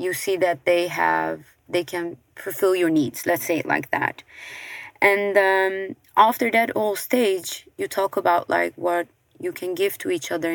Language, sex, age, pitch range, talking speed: English, female, 20-39, 165-200 Hz, 180 wpm